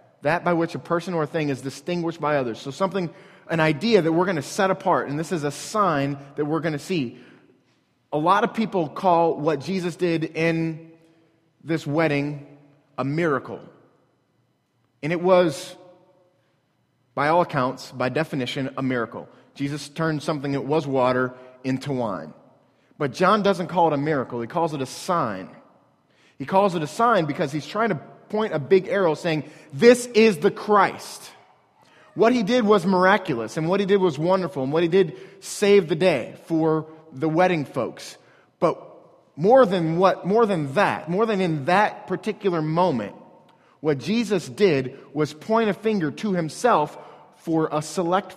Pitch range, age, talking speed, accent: 145-190 Hz, 30-49, 170 wpm, American